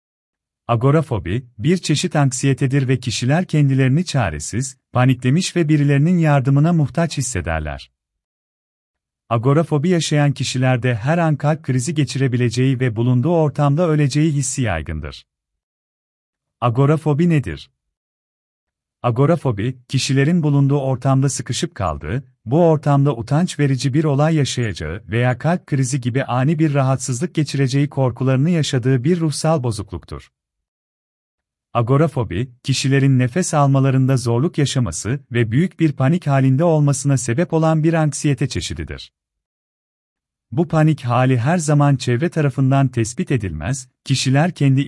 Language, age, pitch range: Turkish, 40-59, 95-150 Hz